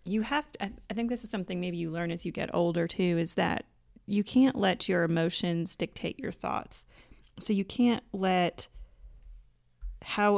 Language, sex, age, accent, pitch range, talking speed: English, female, 30-49, American, 170-195 Hz, 180 wpm